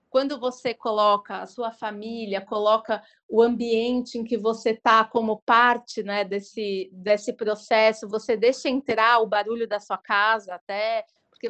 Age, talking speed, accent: 30-49, 150 wpm, Brazilian